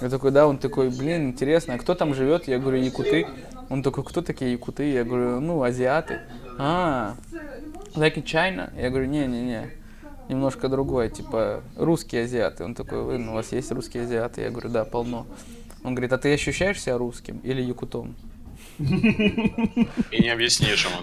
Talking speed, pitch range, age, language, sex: 175 wpm, 125-150 Hz, 20-39, Russian, male